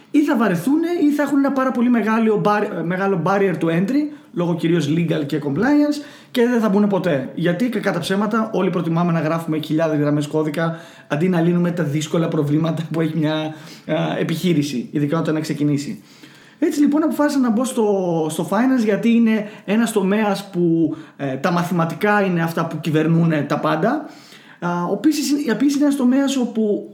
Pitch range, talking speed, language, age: 165-235 Hz, 175 wpm, Greek, 30-49